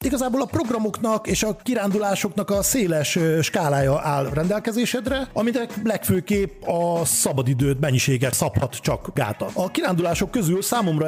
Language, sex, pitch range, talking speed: Hungarian, male, 140-195 Hz, 125 wpm